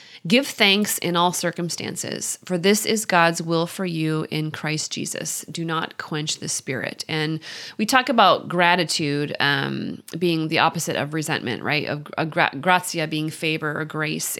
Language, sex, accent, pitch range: English, female, American, 155-185 Hz